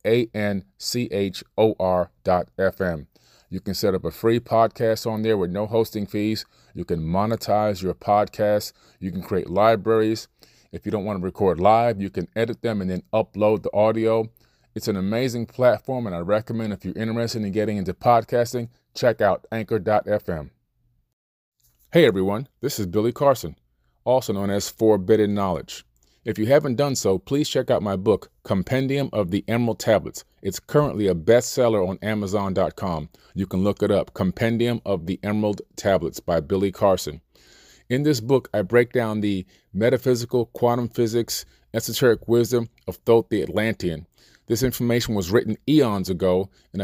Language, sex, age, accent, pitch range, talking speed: English, male, 30-49, American, 95-115 Hz, 160 wpm